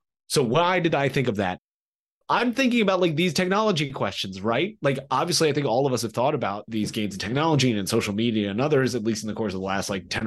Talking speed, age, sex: 265 wpm, 30-49, male